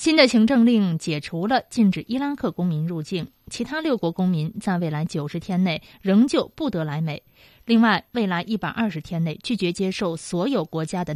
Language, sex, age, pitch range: Chinese, female, 20-39, 165-230 Hz